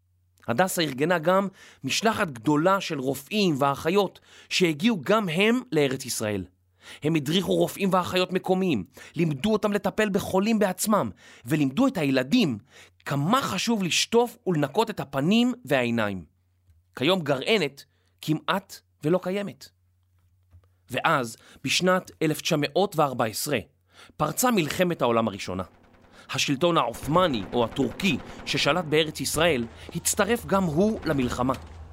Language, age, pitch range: Hebrew, 30-49, 120-190 Hz